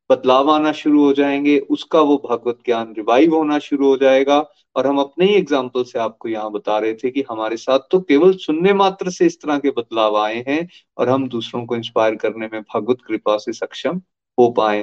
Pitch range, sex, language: 120-165 Hz, male, Hindi